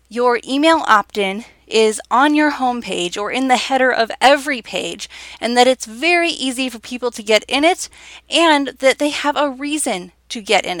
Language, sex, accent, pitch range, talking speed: English, female, American, 190-260 Hz, 190 wpm